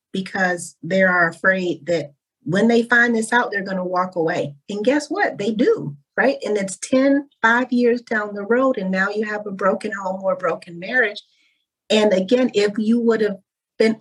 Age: 40-59